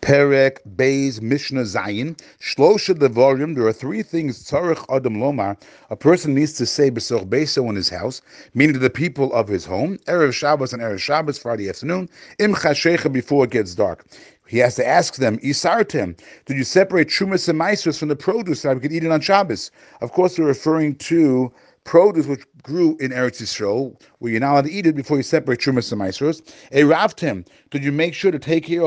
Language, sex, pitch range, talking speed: English, male, 135-170 Hz, 200 wpm